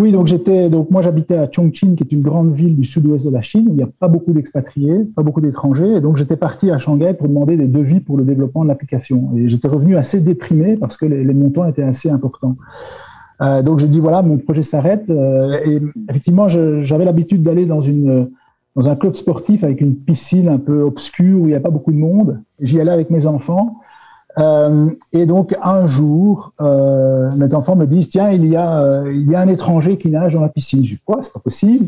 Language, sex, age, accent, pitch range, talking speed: French, male, 50-69, French, 140-180 Hz, 240 wpm